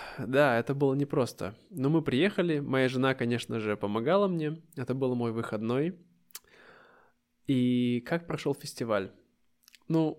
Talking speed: 130 wpm